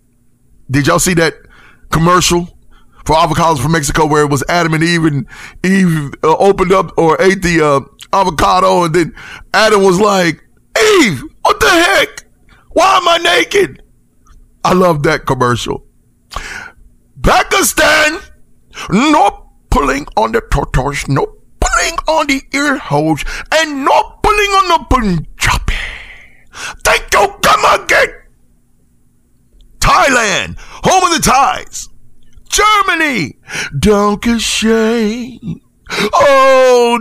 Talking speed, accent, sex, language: 120 wpm, American, male, English